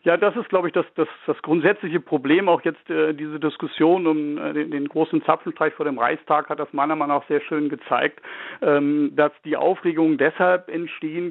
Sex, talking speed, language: male, 200 wpm, German